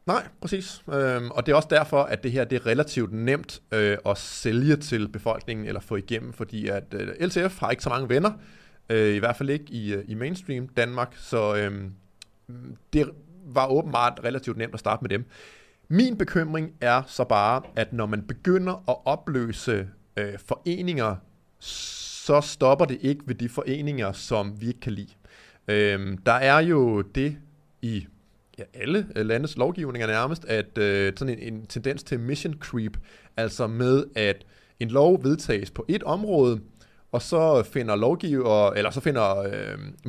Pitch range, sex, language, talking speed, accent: 110-145 Hz, male, Danish, 155 wpm, native